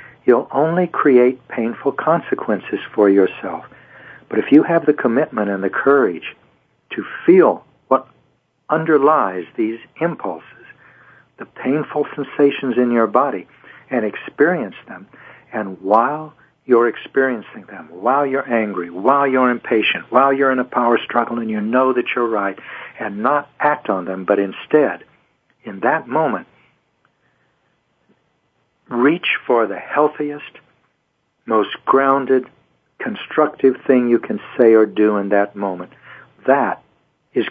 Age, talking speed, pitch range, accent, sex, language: 60-79, 130 wpm, 105-135 Hz, American, male, English